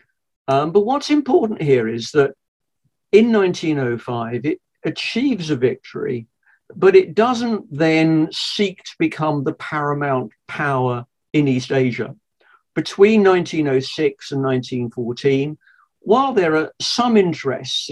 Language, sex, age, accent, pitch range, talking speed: English, male, 50-69, British, 130-165 Hz, 115 wpm